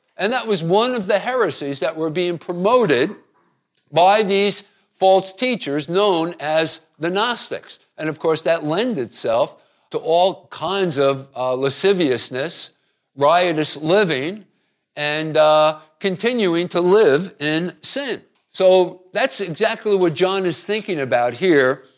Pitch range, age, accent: 160-210 Hz, 50-69, American